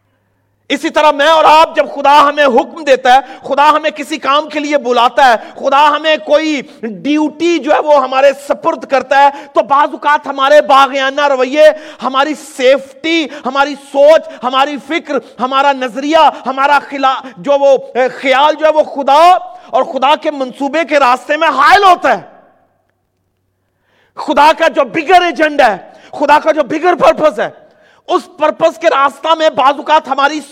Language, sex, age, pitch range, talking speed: Urdu, male, 40-59, 275-325 Hz, 165 wpm